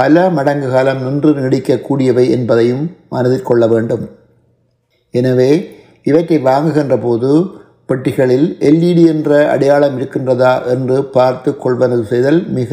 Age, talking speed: 60-79, 105 wpm